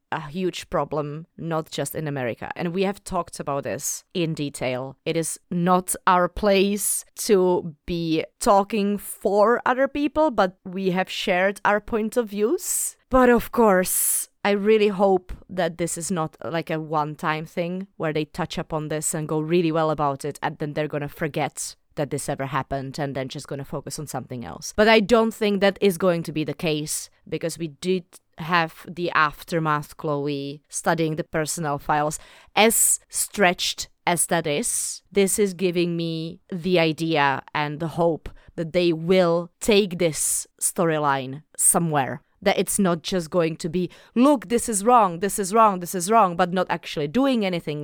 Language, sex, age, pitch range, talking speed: English, female, 30-49, 155-200 Hz, 180 wpm